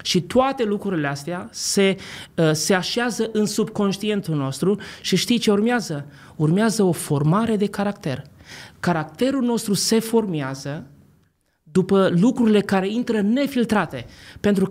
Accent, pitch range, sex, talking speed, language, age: native, 155-200 Hz, male, 120 wpm, Romanian, 30-49